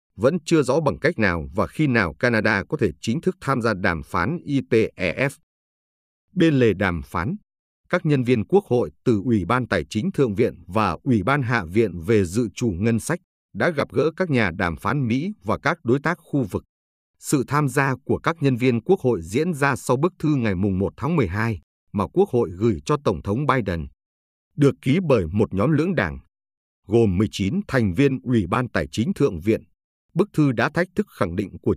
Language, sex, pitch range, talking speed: Vietnamese, male, 100-140 Hz, 210 wpm